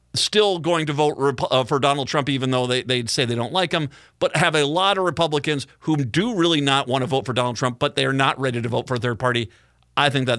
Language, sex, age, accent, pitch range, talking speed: English, male, 50-69, American, 115-155 Hz, 260 wpm